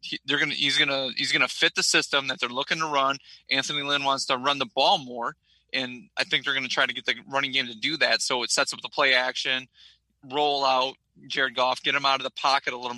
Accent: American